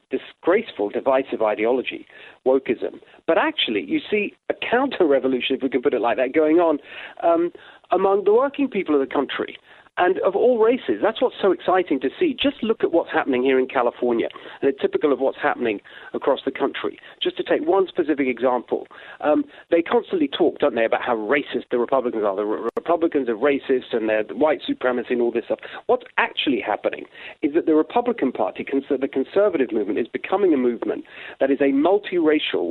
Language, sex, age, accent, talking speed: English, male, 40-59, British, 190 wpm